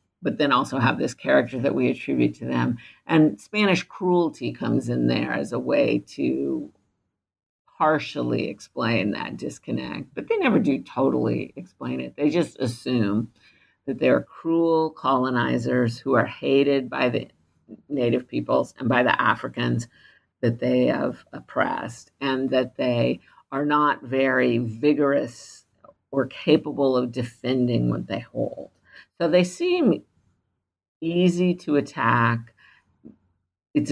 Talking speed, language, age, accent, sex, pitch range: 135 wpm, English, 50-69, American, female, 100-155 Hz